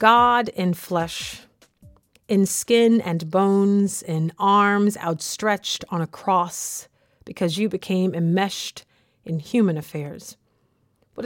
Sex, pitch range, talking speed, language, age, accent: female, 160-215 Hz, 110 wpm, English, 30-49, American